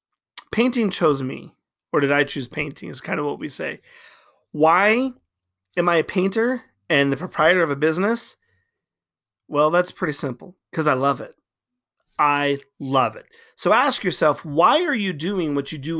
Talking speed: 175 wpm